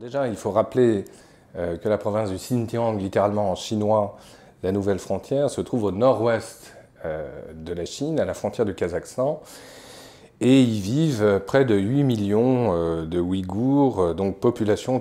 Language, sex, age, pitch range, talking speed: French, male, 40-59, 90-125 Hz, 150 wpm